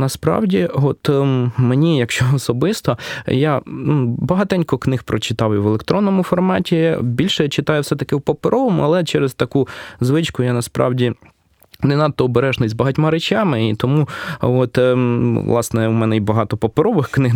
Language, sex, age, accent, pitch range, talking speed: Ukrainian, male, 20-39, native, 115-145 Hz, 140 wpm